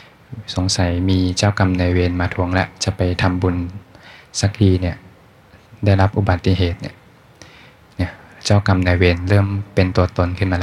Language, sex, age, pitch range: Thai, male, 20-39, 90-105 Hz